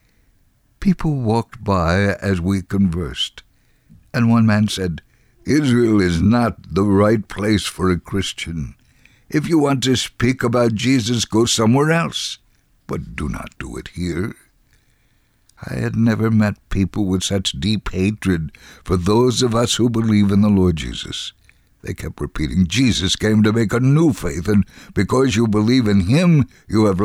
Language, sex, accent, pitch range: English, male, American, 95-125 Hz